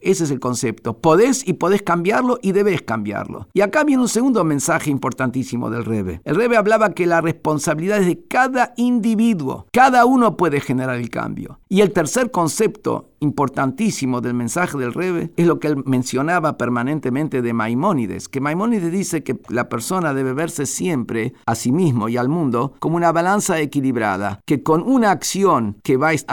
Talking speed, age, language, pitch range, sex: 180 wpm, 50-69, Spanish, 130-185 Hz, male